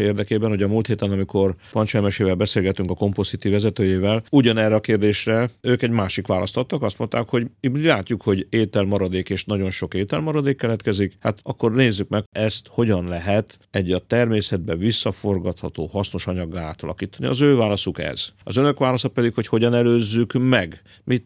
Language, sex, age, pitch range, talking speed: Hungarian, male, 50-69, 95-115 Hz, 165 wpm